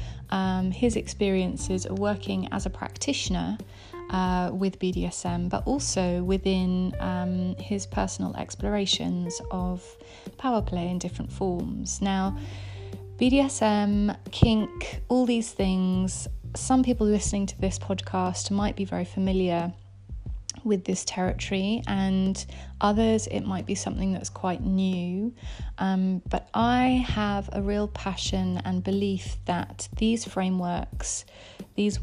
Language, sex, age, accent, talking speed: English, female, 30-49, British, 120 wpm